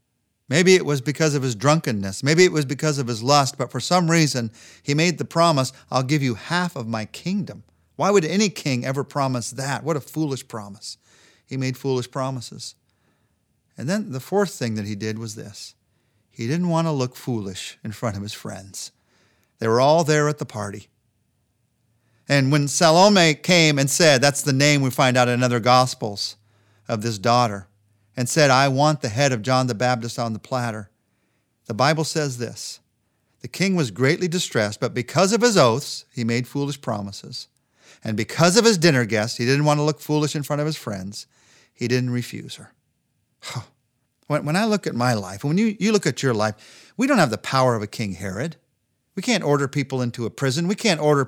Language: English